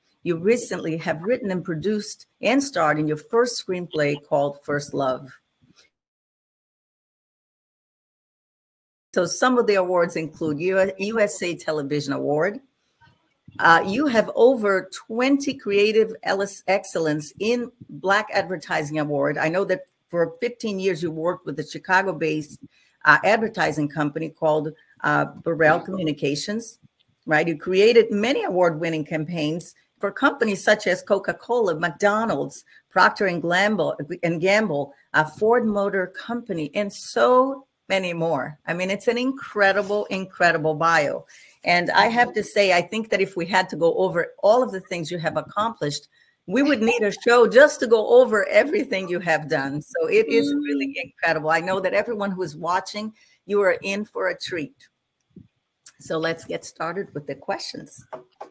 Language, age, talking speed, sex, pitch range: English, 50-69, 145 wpm, female, 160-220 Hz